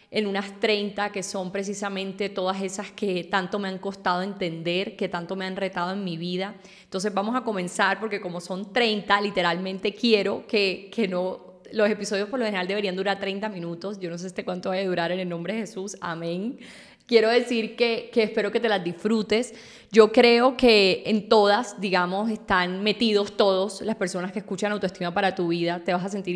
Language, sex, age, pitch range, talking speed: Spanish, female, 10-29, 180-210 Hz, 200 wpm